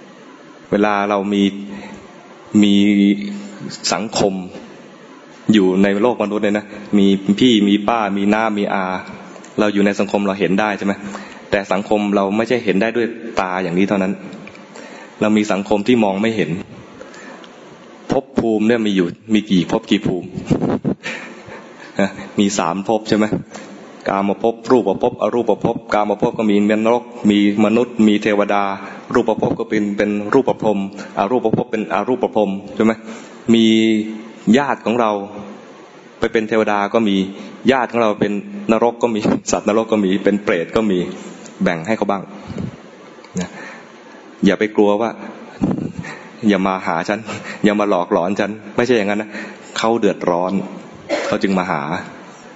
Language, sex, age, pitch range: English, male, 20-39, 100-110 Hz